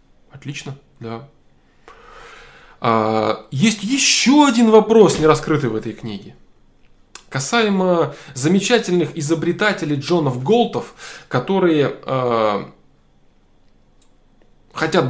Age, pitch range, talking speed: 20-39, 115-170 Hz, 80 wpm